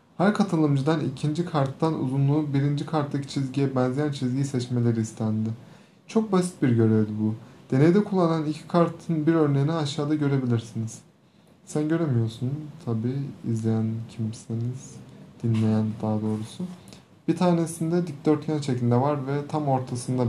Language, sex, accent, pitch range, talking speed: Turkish, male, native, 115-160 Hz, 120 wpm